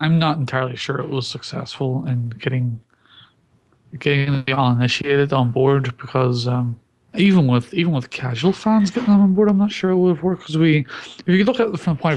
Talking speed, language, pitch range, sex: 210 wpm, English, 140-200 Hz, male